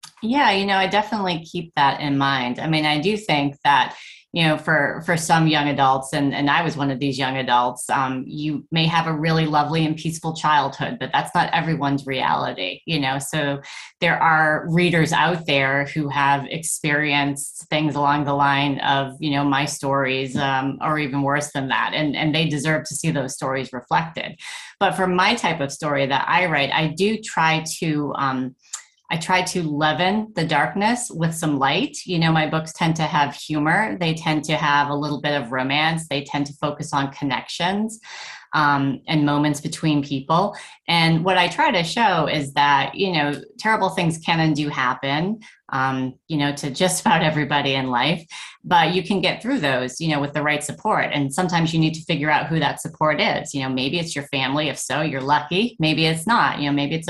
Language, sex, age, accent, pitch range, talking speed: English, female, 30-49, American, 140-165 Hz, 205 wpm